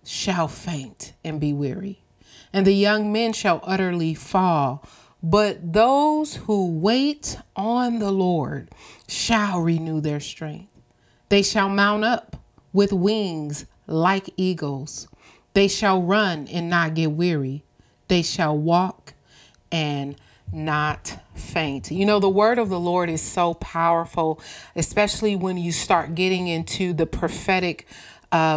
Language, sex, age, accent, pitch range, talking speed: English, female, 30-49, American, 160-200 Hz, 130 wpm